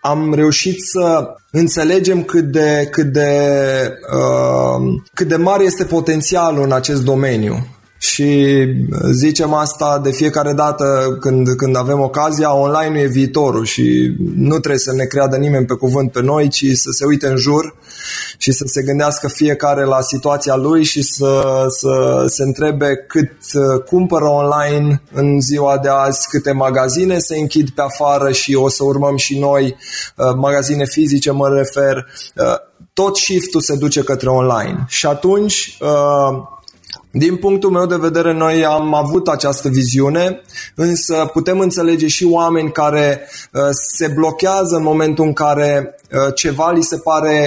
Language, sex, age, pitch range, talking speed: Romanian, male, 20-39, 135-160 Hz, 150 wpm